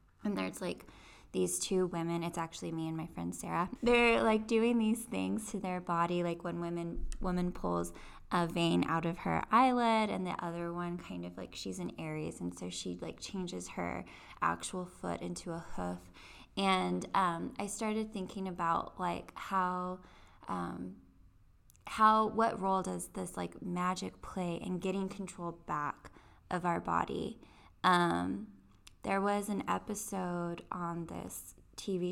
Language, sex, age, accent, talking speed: English, female, 10-29, American, 160 wpm